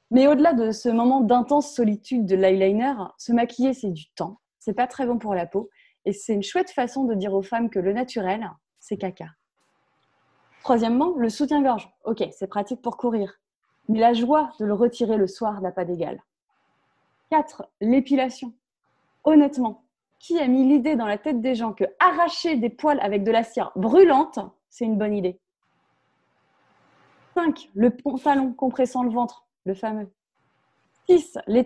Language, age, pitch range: French, 20-39, 195-255 Hz